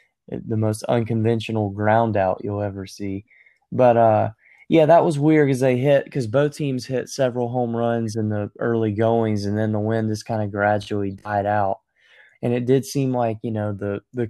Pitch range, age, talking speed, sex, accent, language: 105-120 Hz, 20-39, 195 wpm, male, American, English